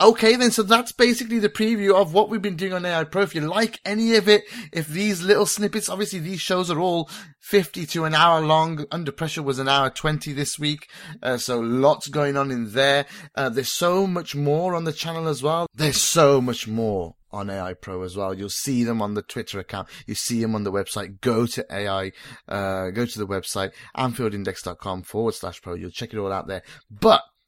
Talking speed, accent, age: 220 wpm, British, 30-49